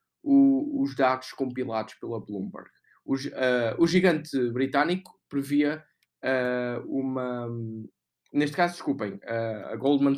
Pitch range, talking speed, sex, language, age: 120-150 Hz, 95 wpm, male, Portuguese, 20-39